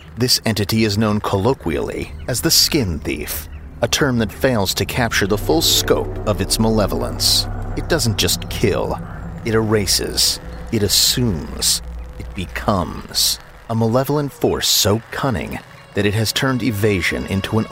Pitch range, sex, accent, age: 85-120 Hz, male, American, 40-59